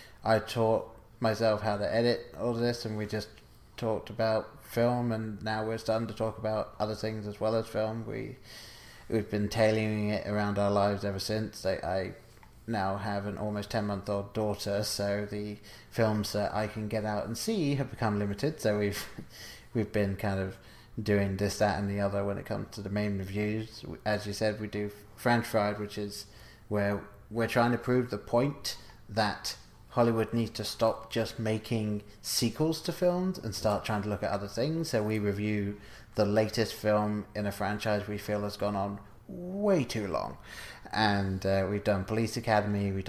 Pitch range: 105-115 Hz